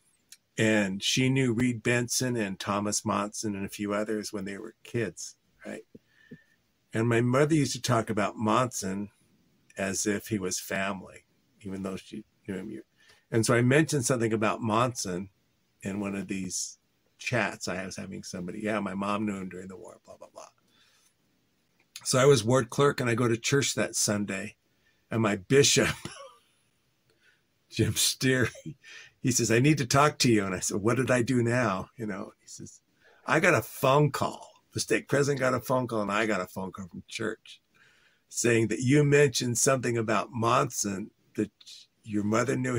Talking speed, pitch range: 180 wpm, 105-125 Hz